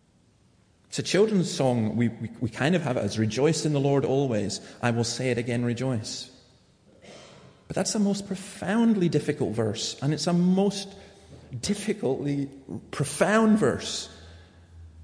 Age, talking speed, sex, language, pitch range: 40-59, 150 wpm, male, English, 115-155 Hz